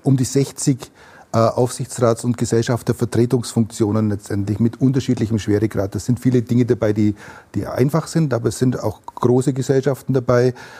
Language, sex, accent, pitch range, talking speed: German, male, Austrian, 115-130 Hz, 145 wpm